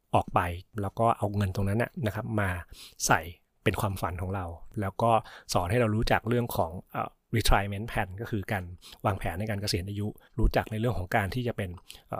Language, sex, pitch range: Thai, male, 100-115 Hz